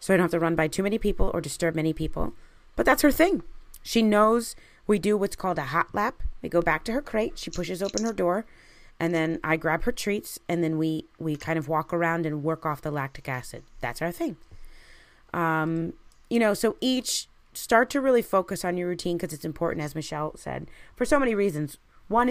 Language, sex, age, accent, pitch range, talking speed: English, female, 30-49, American, 155-205 Hz, 225 wpm